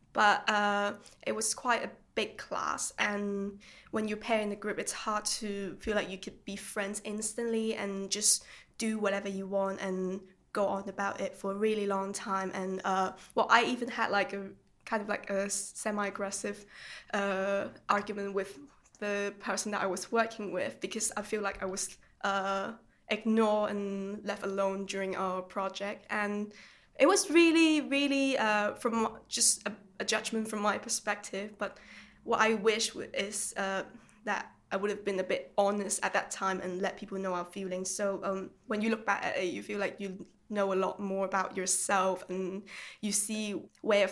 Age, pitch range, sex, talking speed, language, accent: 10-29, 195-215 Hz, female, 185 wpm, English, British